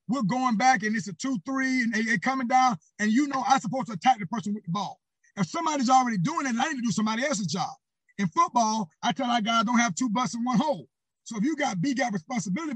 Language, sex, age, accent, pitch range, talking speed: English, male, 30-49, American, 185-260 Hz, 260 wpm